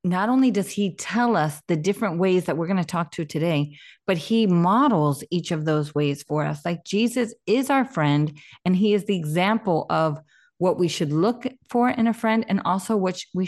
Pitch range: 160-215 Hz